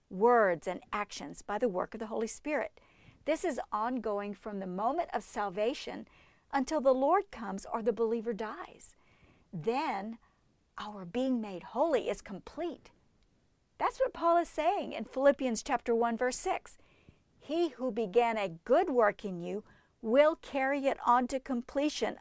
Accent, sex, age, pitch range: American, female, 50-69, 210-265 Hz